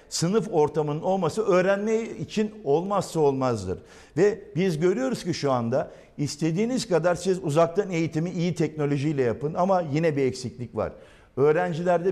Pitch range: 145-185 Hz